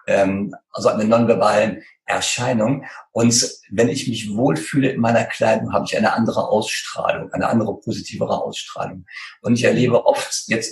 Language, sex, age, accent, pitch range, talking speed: German, male, 50-69, German, 105-135 Hz, 145 wpm